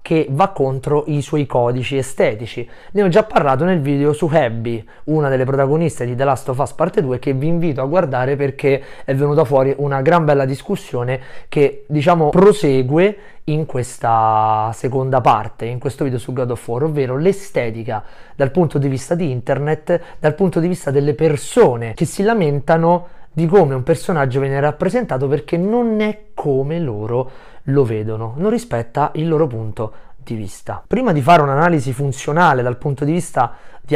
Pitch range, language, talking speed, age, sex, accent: 130-165 Hz, Italian, 175 wpm, 30-49, male, native